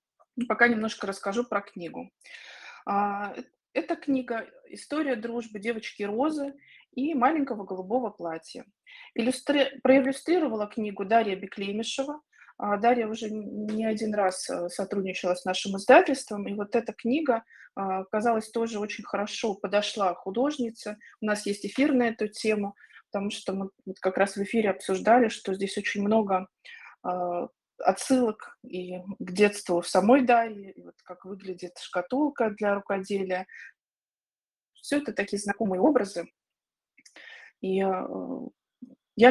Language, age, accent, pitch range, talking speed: Russian, 20-39, native, 195-245 Hz, 125 wpm